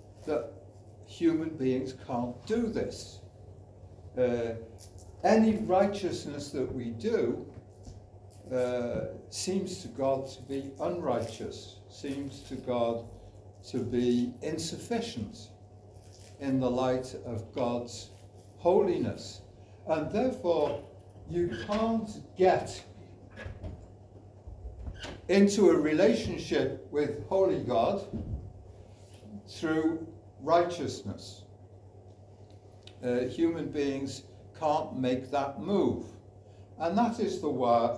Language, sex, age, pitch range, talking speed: English, male, 60-79, 100-145 Hz, 90 wpm